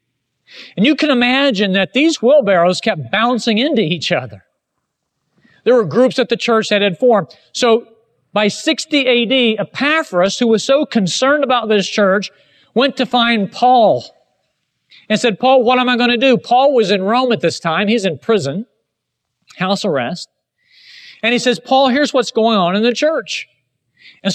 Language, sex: English, male